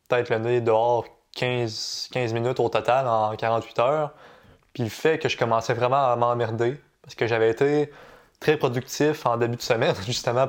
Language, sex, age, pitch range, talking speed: French, male, 20-39, 115-140 Hz, 175 wpm